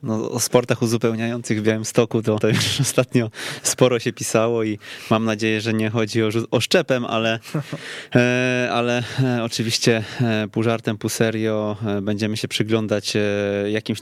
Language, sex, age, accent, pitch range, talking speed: Polish, male, 20-39, native, 110-125 Hz, 140 wpm